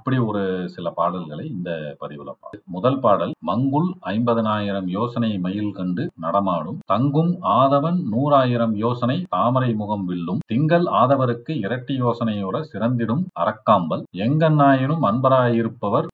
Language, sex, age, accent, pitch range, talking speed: Tamil, male, 40-59, native, 105-140 Hz, 75 wpm